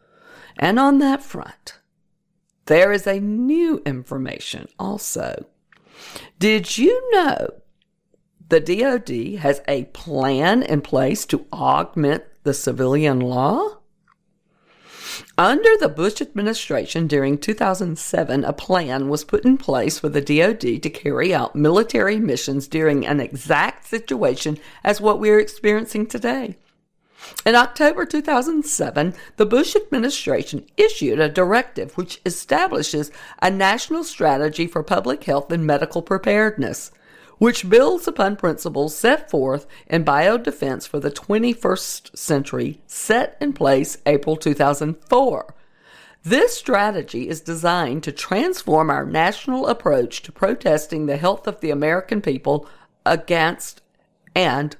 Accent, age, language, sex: American, 50-69, English, female